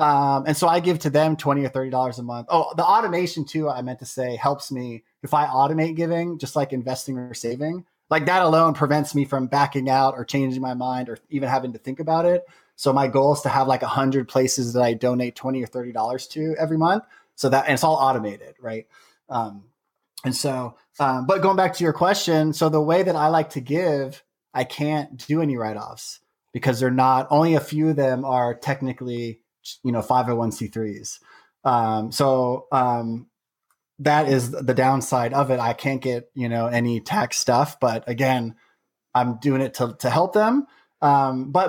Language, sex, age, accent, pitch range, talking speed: English, male, 20-39, American, 125-155 Hz, 200 wpm